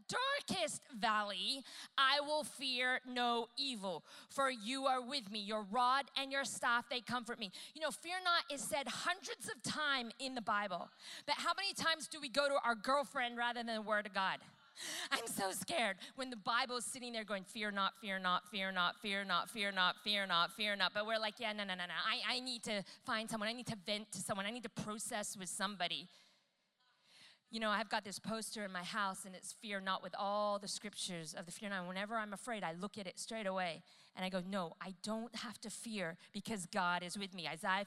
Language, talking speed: English, 225 wpm